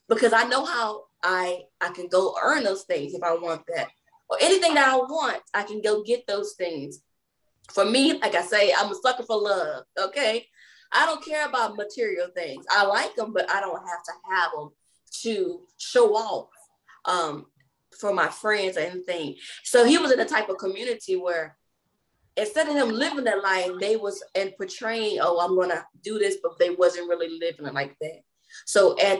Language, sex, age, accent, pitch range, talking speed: English, female, 20-39, American, 185-260 Hz, 195 wpm